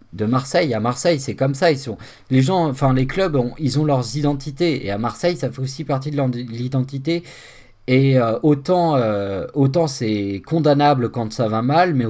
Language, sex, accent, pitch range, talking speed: French, male, French, 115-145 Hz, 200 wpm